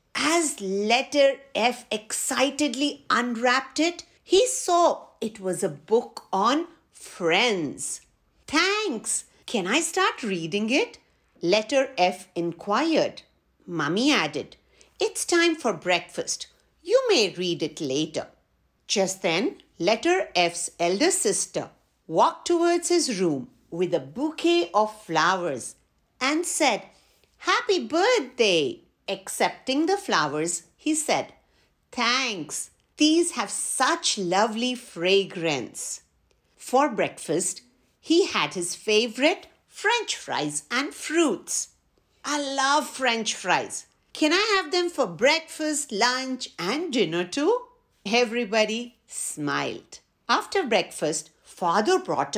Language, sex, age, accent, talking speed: English, female, 50-69, Indian, 110 wpm